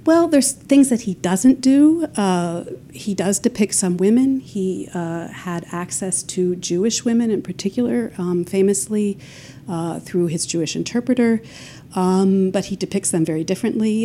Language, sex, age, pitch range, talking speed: English, female, 50-69, 165-205 Hz, 155 wpm